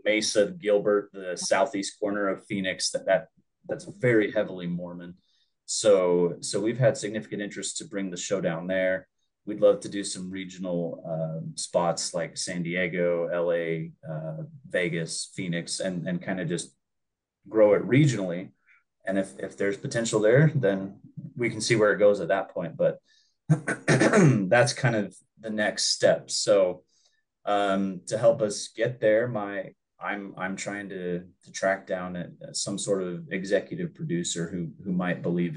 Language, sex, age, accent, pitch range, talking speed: English, male, 30-49, American, 90-110 Hz, 165 wpm